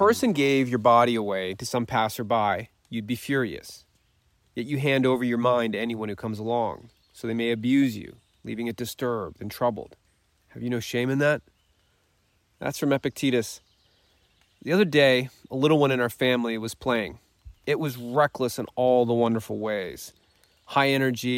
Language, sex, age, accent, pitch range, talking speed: English, male, 30-49, American, 115-135 Hz, 180 wpm